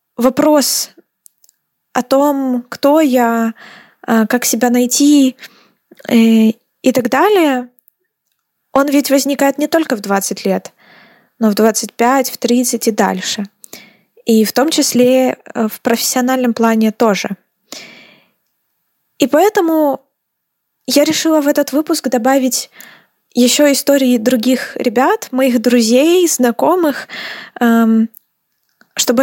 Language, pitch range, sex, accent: Ukrainian, 225-270 Hz, female, native